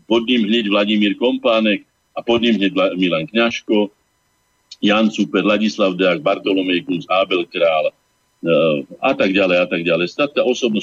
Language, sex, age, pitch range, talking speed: Slovak, male, 50-69, 95-125 Hz, 145 wpm